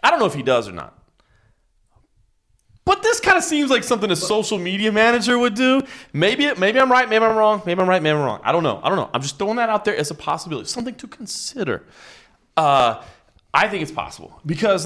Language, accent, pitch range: Swedish, American, 160-260 Hz